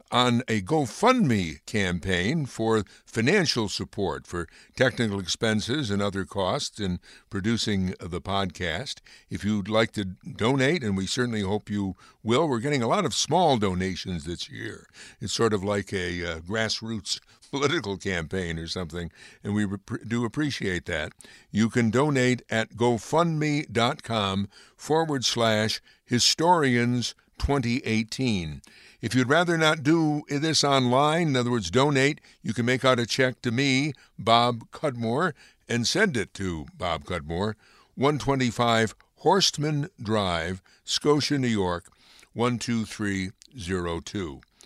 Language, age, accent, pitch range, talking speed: English, 60-79, American, 100-135 Hz, 130 wpm